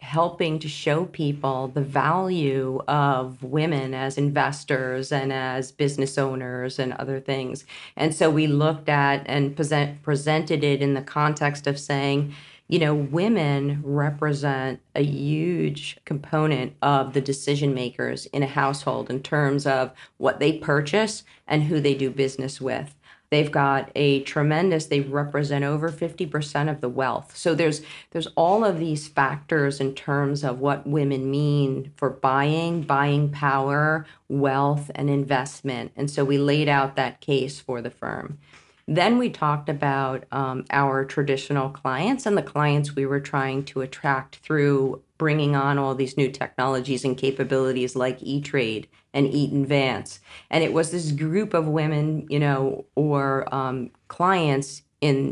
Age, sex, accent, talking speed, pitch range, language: 40-59, female, American, 150 wpm, 135-150 Hz, English